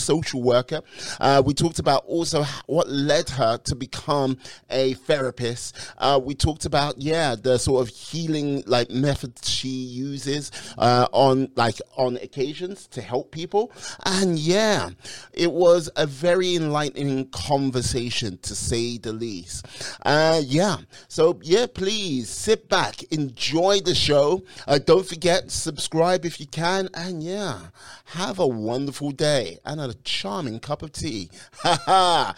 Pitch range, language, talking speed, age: 130-175 Hz, English, 145 wpm, 30-49